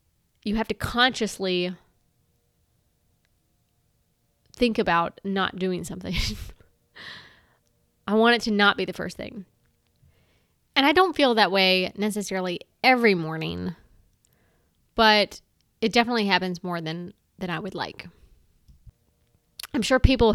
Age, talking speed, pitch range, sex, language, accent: 20-39, 120 wpm, 185-220 Hz, female, English, American